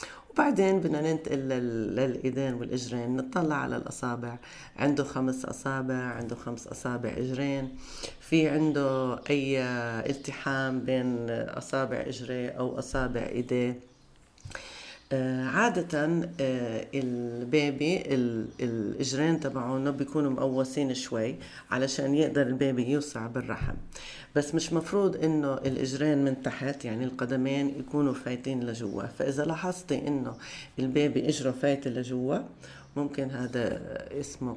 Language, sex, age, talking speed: Arabic, female, 40-59, 100 wpm